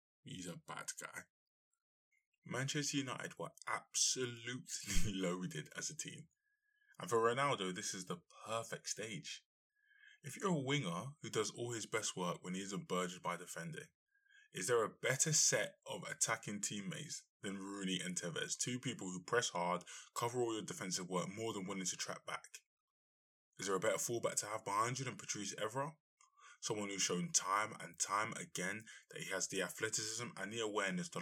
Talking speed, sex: 175 wpm, male